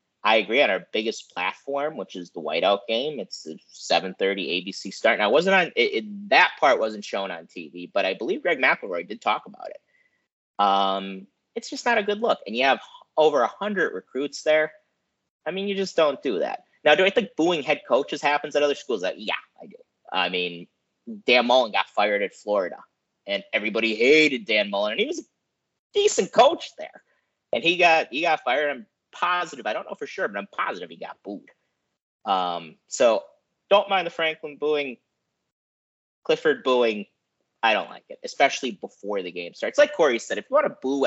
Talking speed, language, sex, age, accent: 205 wpm, English, male, 30-49, American